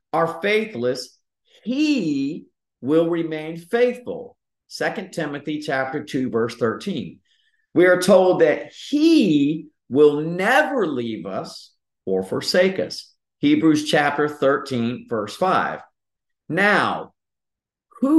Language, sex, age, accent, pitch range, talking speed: English, male, 50-69, American, 125-190 Hz, 100 wpm